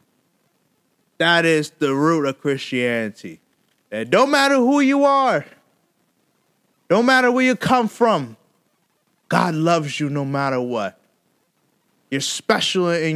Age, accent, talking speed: 20-39, American, 125 wpm